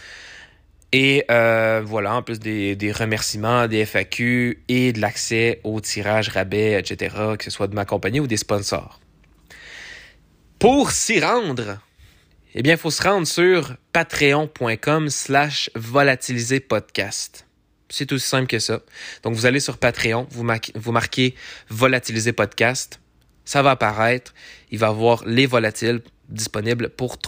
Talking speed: 145 wpm